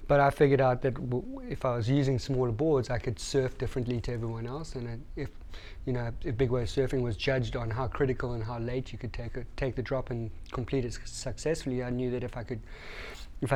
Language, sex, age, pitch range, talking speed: English, male, 30-49, 115-130 Hz, 240 wpm